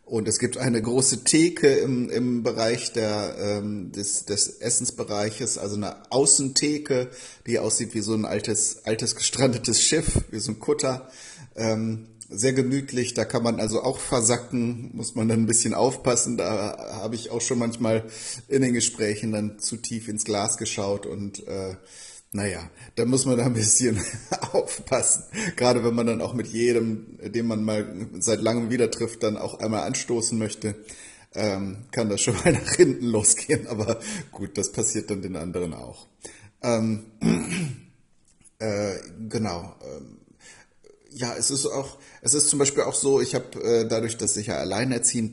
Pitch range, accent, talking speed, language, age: 110-125 Hz, German, 165 wpm, German, 30-49